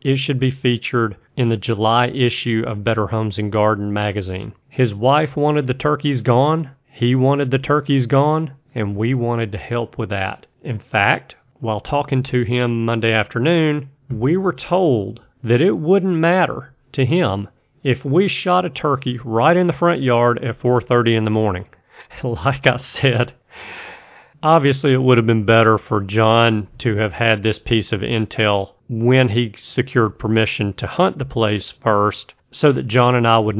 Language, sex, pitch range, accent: English, male, 110-130 Hz, American